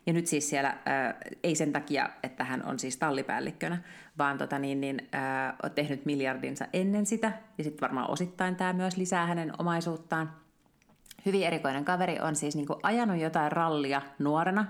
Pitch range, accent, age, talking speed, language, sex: 145-185 Hz, native, 30-49, 170 wpm, Finnish, female